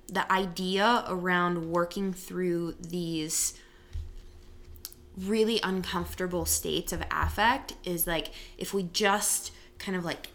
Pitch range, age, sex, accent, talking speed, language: 155-195 Hz, 20-39, female, American, 110 wpm, English